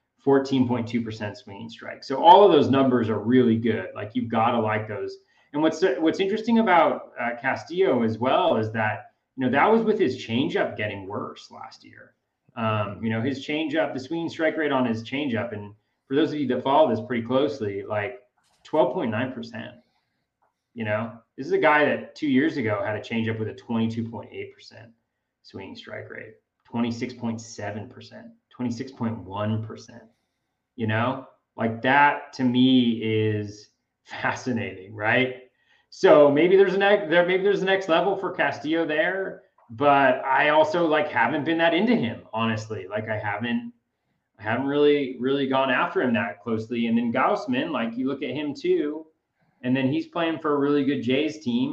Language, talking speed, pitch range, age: English, 170 wpm, 115-150 Hz, 30-49